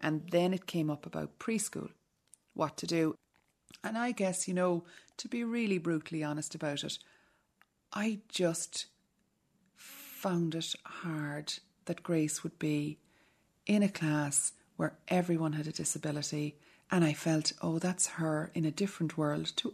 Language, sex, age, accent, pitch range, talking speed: English, female, 40-59, Irish, 160-210 Hz, 150 wpm